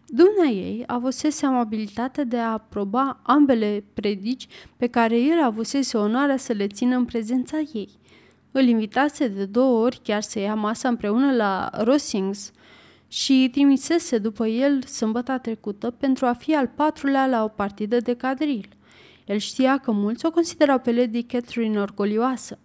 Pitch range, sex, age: 225-280 Hz, female, 30-49